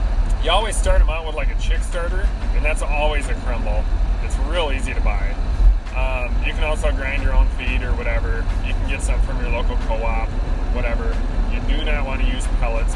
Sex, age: male, 30-49